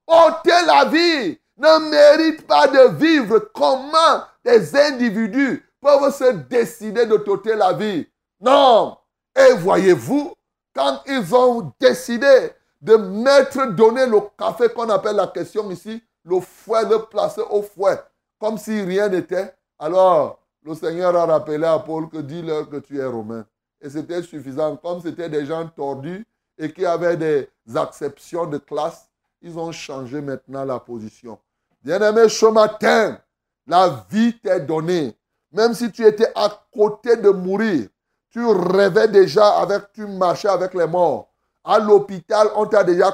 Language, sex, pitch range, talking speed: French, male, 170-235 Hz, 150 wpm